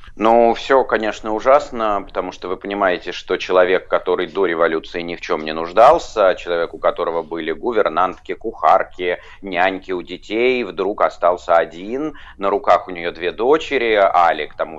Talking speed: 160 wpm